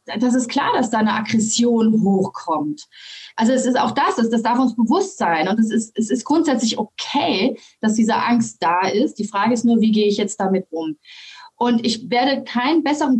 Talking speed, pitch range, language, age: 205 wpm, 220-270 Hz, German, 30-49